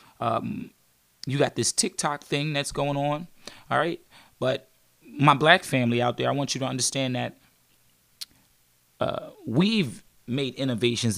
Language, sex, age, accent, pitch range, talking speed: English, male, 30-49, American, 115-140 Hz, 145 wpm